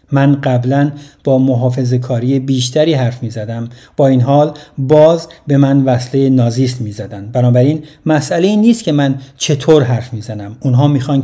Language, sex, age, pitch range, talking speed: Persian, male, 50-69, 125-150 Hz, 165 wpm